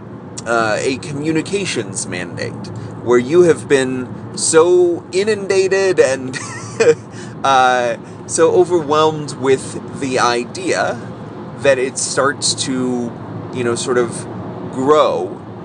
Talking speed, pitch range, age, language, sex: 100 wpm, 115-145 Hz, 30-49, English, male